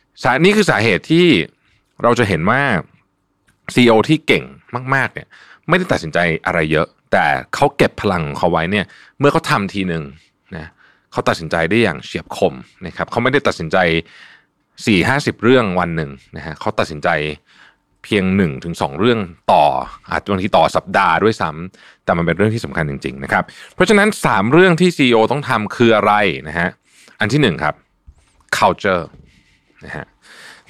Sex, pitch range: male, 85-140 Hz